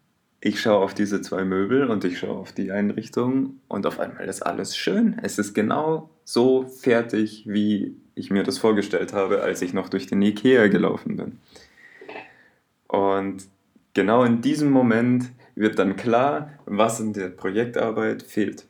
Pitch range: 100-130 Hz